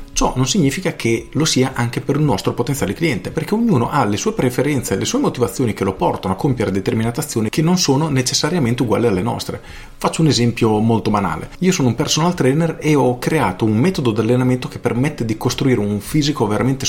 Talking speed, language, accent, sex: 215 wpm, Italian, native, male